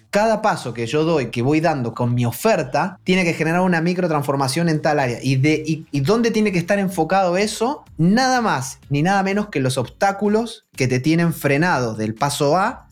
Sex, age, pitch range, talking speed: male, 20-39, 135-175 Hz, 190 wpm